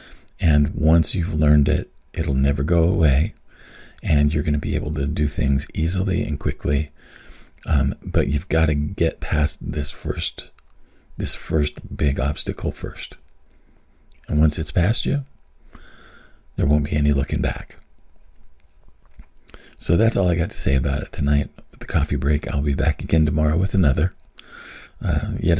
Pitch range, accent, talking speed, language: 70-85 Hz, American, 160 wpm, English